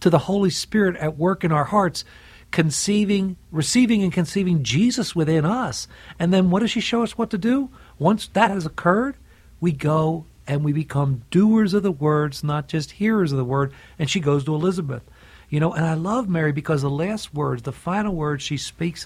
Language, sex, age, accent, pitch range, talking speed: English, male, 50-69, American, 140-200 Hz, 205 wpm